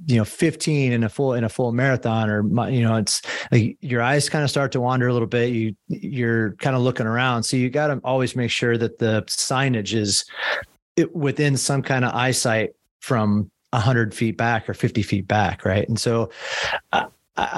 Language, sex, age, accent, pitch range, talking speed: English, male, 30-49, American, 110-130 Hz, 205 wpm